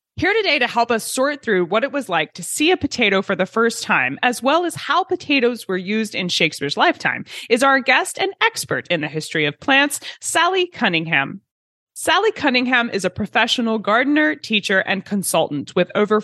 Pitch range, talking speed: 180-270 Hz, 190 wpm